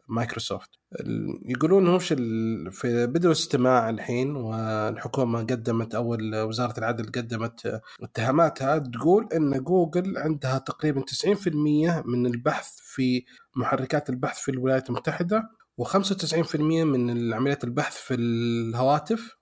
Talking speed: 100 wpm